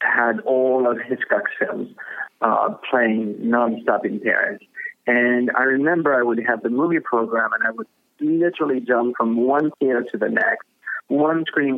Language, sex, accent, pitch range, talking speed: English, male, American, 120-150 Hz, 165 wpm